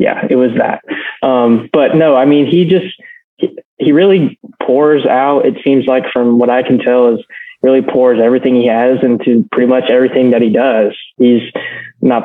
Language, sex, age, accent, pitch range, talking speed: English, male, 20-39, American, 120-140 Hz, 190 wpm